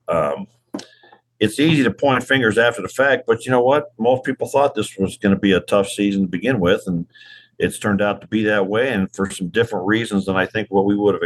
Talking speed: 250 wpm